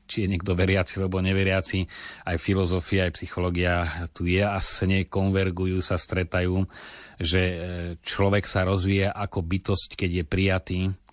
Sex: male